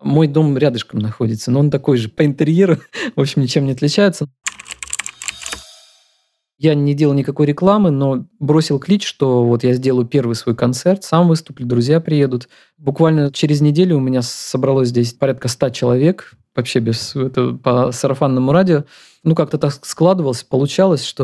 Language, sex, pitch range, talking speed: Russian, male, 125-155 Hz, 160 wpm